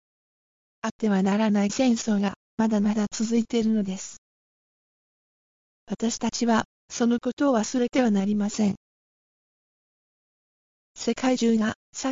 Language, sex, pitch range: Japanese, female, 205-235 Hz